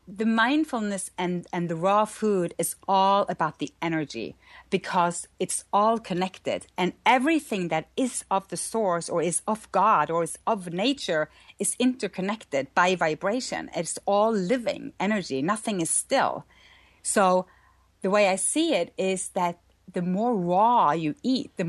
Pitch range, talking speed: 170-215 Hz, 155 wpm